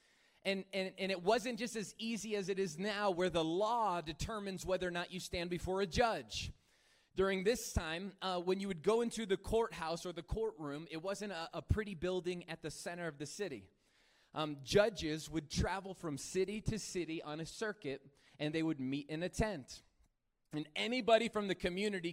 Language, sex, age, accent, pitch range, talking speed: English, male, 20-39, American, 160-195 Hz, 200 wpm